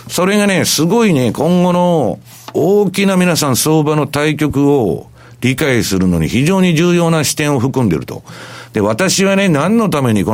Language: Japanese